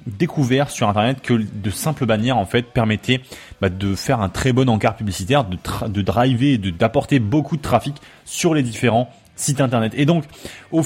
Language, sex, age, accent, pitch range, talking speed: French, male, 20-39, French, 115-150 Hz, 200 wpm